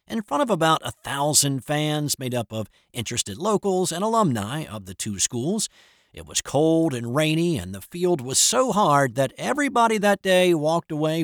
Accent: American